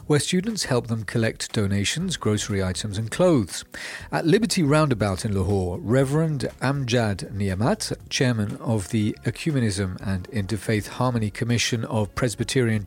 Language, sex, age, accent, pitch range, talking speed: English, male, 40-59, British, 105-140 Hz, 130 wpm